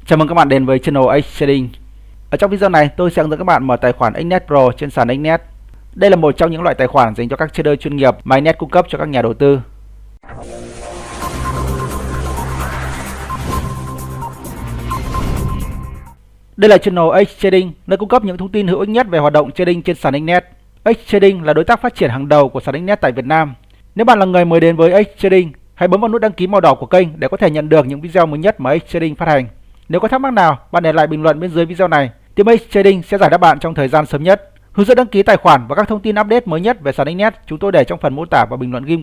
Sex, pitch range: male, 125-185 Hz